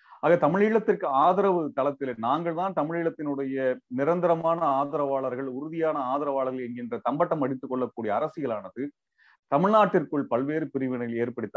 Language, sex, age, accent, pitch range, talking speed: Tamil, male, 40-59, native, 130-170 Hz, 105 wpm